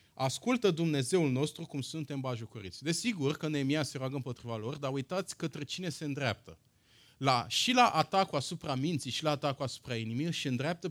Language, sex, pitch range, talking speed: Romanian, male, 120-160 Hz, 175 wpm